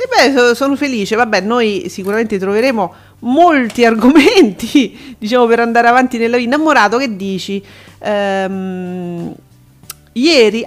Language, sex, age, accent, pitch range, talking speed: Italian, female, 40-59, native, 210-280 Hz, 110 wpm